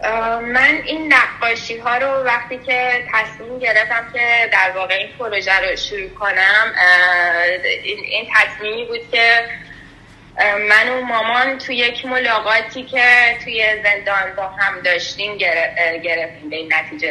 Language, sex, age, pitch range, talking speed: English, female, 10-29, 190-235 Hz, 135 wpm